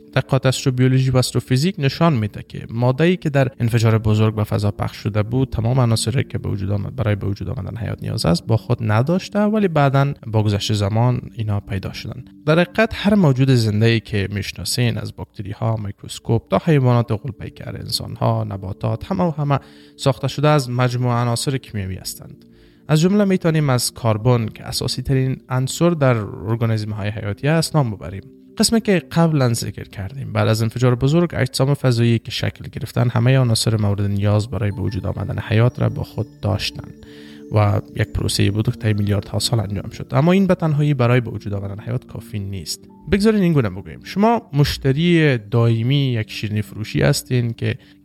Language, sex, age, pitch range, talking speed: Persian, male, 30-49, 105-140 Hz, 180 wpm